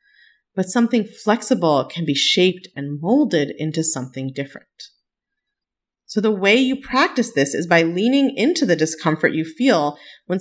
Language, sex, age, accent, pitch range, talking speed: English, female, 30-49, American, 155-250 Hz, 150 wpm